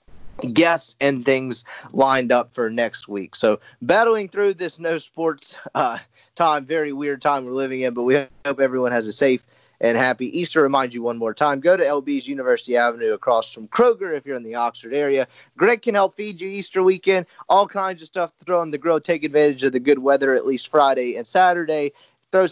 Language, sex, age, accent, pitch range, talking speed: English, male, 30-49, American, 130-175 Hz, 210 wpm